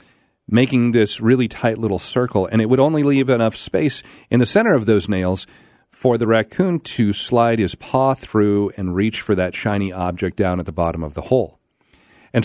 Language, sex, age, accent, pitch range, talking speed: English, male, 40-59, American, 105-130 Hz, 200 wpm